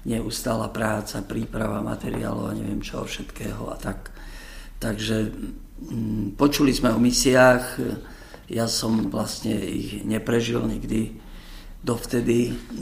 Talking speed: 105 wpm